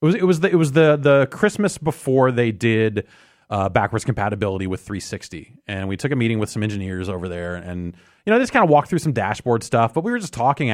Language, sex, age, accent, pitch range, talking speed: English, male, 30-49, American, 95-130 Hz, 245 wpm